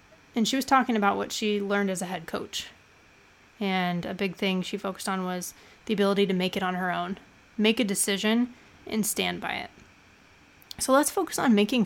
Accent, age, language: American, 20-39, English